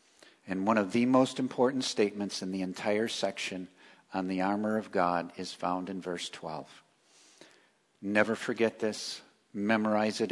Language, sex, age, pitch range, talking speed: English, male, 50-69, 95-125 Hz, 150 wpm